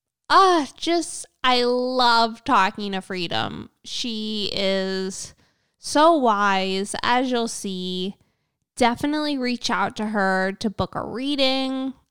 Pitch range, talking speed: 195-250 Hz, 115 wpm